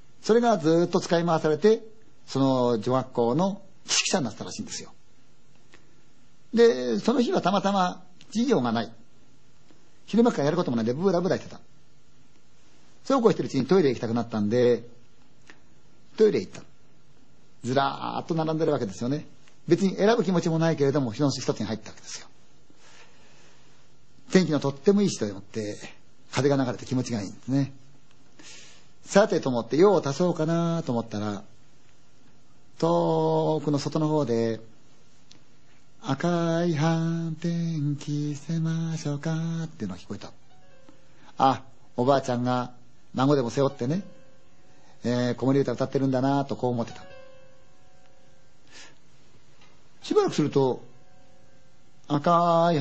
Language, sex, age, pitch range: Chinese, male, 50-69, 125-170 Hz